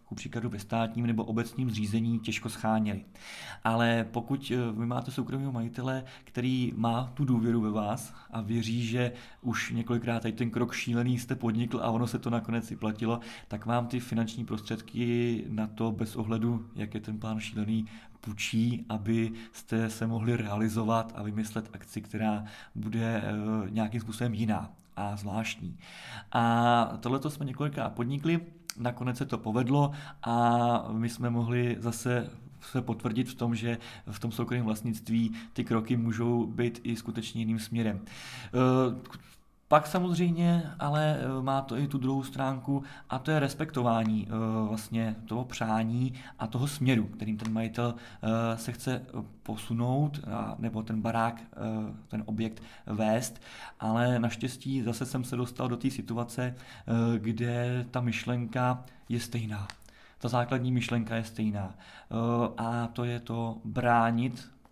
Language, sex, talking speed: Czech, male, 145 wpm